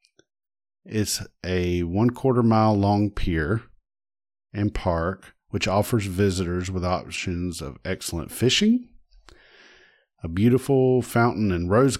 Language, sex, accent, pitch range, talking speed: English, male, American, 95-120 Hz, 110 wpm